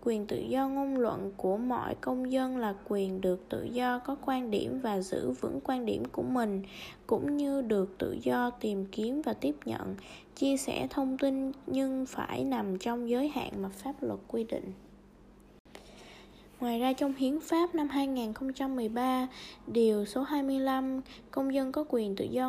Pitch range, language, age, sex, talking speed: 220-275 Hz, Vietnamese, 10-29, female, 175 wpm